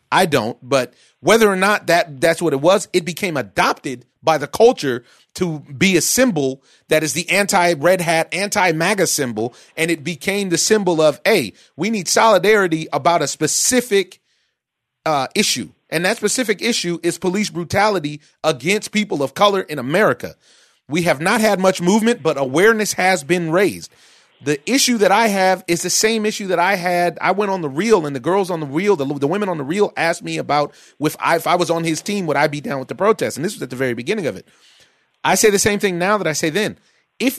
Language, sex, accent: English, male, American